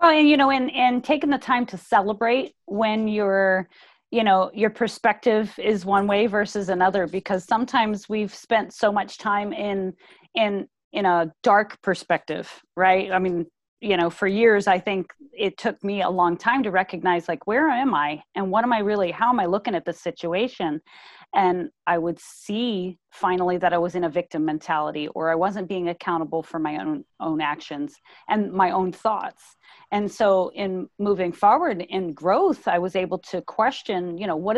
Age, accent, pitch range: 30-49, American, 180-230 Hz